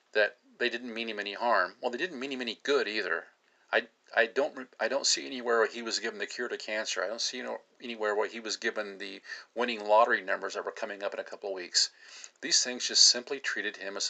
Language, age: English, 40-59